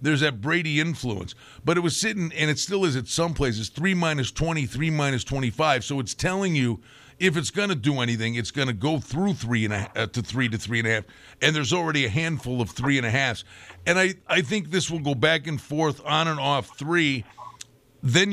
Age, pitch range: 50-69, 130-165 Hz